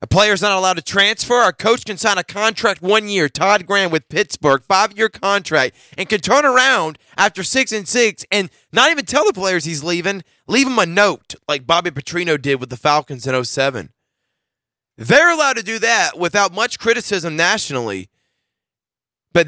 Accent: American